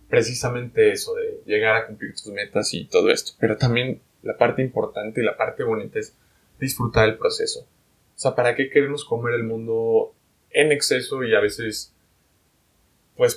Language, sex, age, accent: English, male, 20-39, Mexican